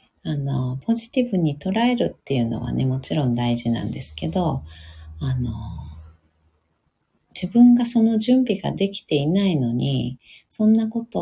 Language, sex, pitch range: Japanese, female, 125-190 Hz